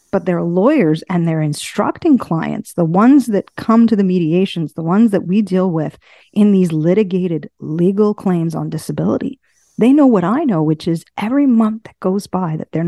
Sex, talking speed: female, 190 wpm